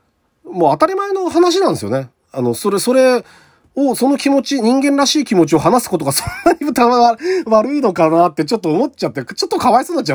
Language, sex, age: Japanese, male, 40-59